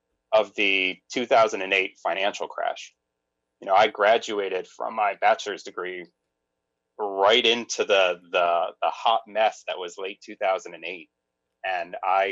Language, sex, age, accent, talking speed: English, male, 30-49, American, 125 wpm